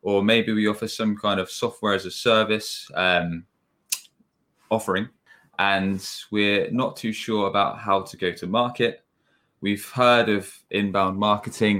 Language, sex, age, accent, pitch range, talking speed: English, male, 20-39, British, 90-105 Hz, 145 wpm